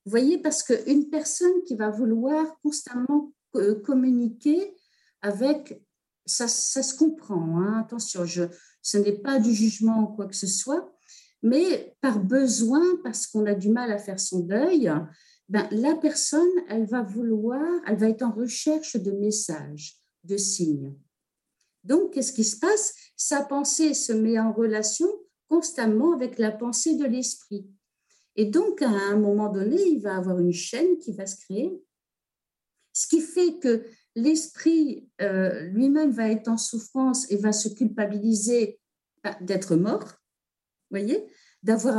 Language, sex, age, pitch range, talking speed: French, female, 50-69, 210-295 Hz, 155 wpm